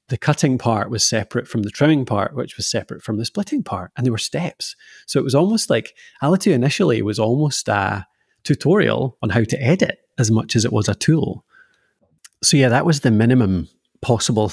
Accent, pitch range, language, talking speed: British, 105-130 Hz, English, 200 wpm